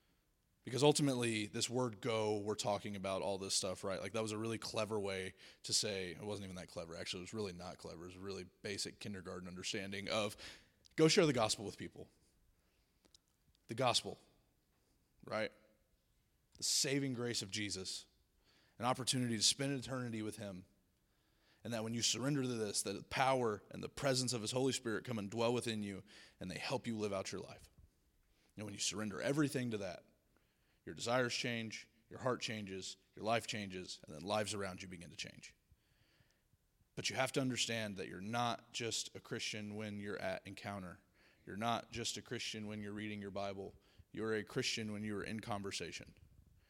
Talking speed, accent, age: 190 wpm, American, 20-39